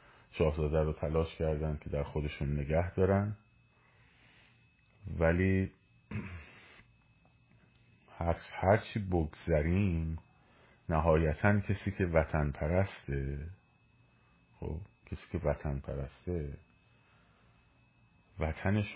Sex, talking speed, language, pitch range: male, 80 wpm, Persian, 75-95 Hz